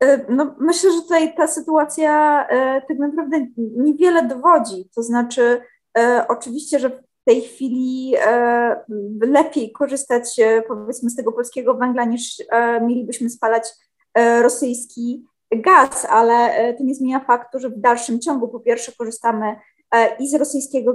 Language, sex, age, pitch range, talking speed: Polish, female, 20-39, 235-280 Hz, 125 wpm